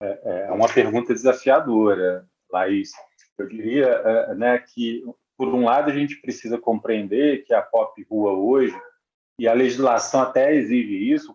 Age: 40-59